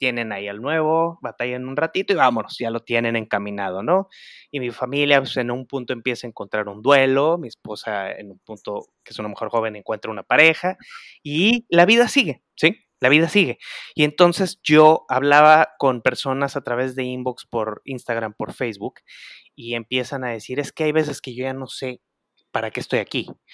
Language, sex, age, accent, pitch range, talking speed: Spanish, male, 30-49, Mexican, 120-150 Hz, 200 wpm